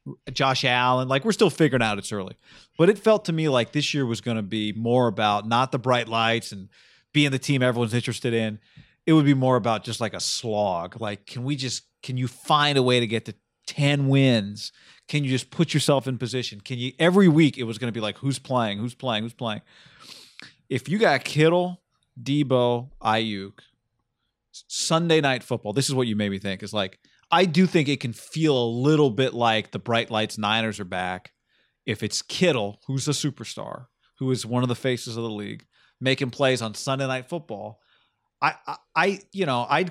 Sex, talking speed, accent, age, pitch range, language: male, 210 wpm, American, 30-49, 115-150 Hz, English